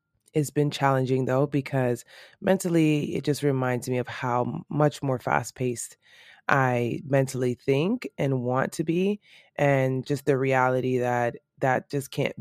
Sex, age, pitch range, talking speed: female, 20-39, 120-145 Hz, 145 wpm